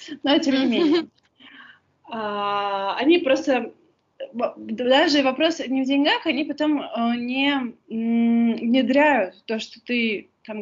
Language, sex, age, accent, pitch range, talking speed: Russian, female, 20-39, native, 220-270 Hz, 105 wpm